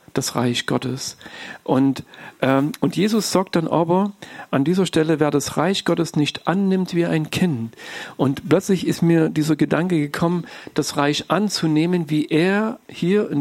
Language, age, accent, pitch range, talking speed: German, 50-69, German, 145-175 Hz, 160 wpm